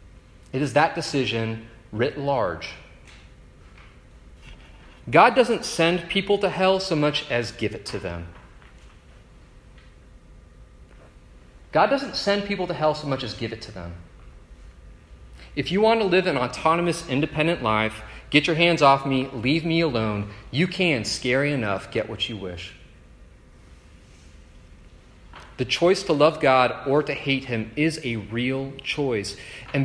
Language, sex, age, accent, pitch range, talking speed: English, male, 30-49, American, 95-155 Hz, 145 wpm